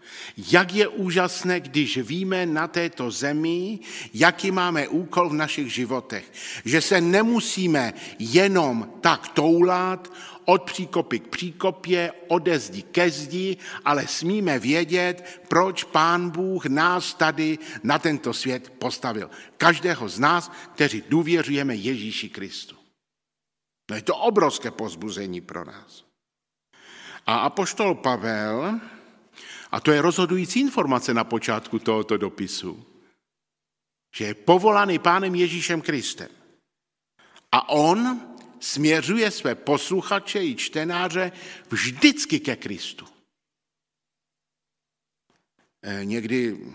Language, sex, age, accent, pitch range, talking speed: Czech, male, 50-69, native, 120-180 Hz, 105 wpm